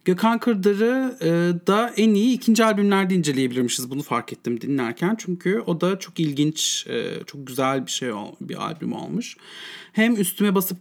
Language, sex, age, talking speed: English, male, 40-59, 160 wpm